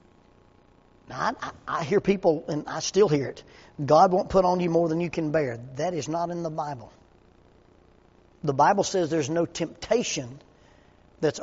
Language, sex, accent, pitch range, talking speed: English, male, American, 150-210 Hz, 170 wpm